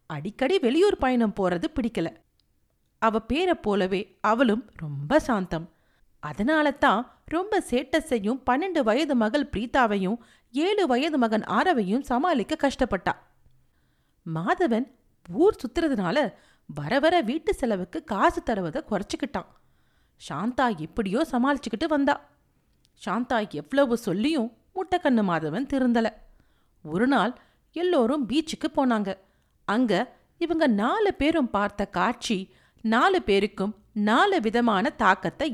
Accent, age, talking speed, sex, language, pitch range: native, 40-59, 100 wpm, female, Tamil, 185-285 Hz